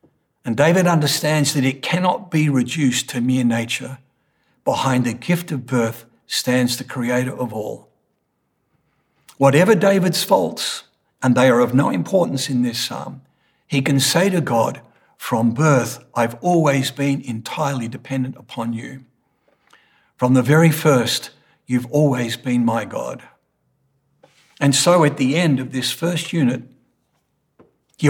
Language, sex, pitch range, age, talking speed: English, male, 125-150 Hz, 60-79, 140 wpm